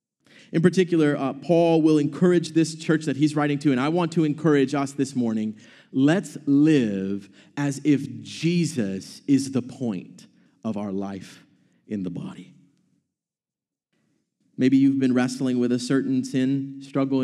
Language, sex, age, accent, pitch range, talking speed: English, male, 40-59, American, 130-170 Hz, 150 wpm